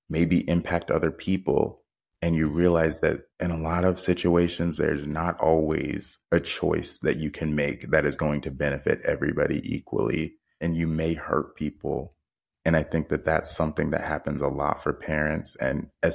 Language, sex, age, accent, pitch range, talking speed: English, male, 30-49, American, 75-90 Hz, 180 wpm